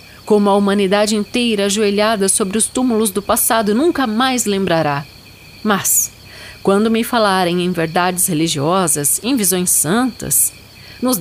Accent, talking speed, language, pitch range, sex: Brazilian, 130 wpm, Portuguese, 155-240 Hz, female